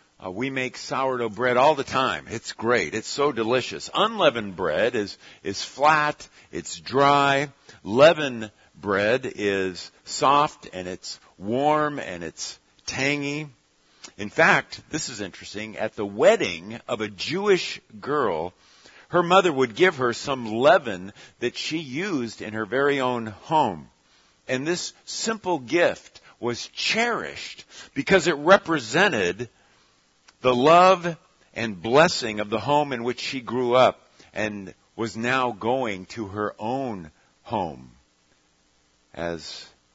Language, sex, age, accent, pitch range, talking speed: English, male, 50-69, American, 100-150 Hz, 130 wpm